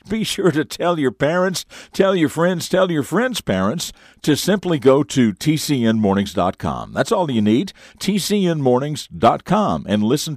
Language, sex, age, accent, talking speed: English, male, 60-79, American, 145 wpm